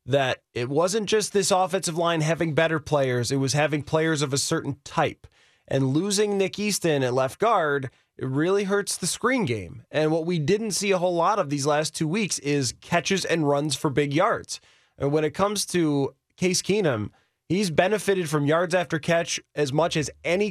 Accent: American